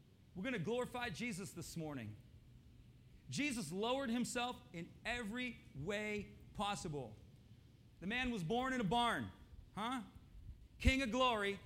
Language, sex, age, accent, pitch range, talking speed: English, male, 40-59, American, 185-235 Hz, 130 wpm